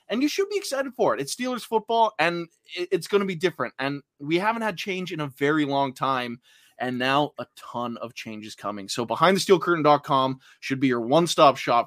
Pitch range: 135-180 Hz